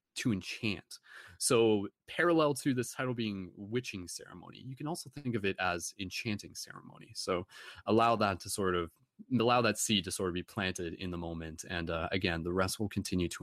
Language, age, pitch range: English, 30-49, 95-125 Hz